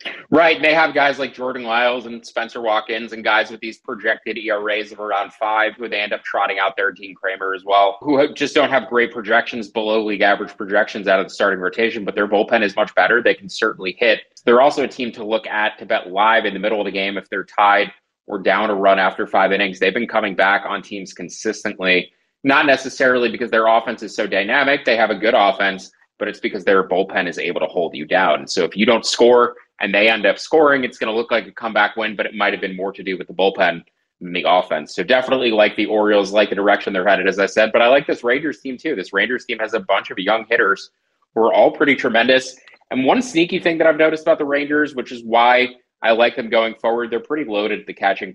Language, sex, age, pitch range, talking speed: English, male, 30-49, 100-125 Hz, 250 wpm